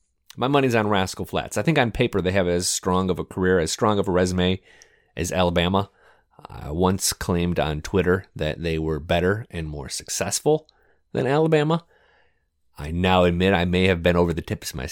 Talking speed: 195 wpm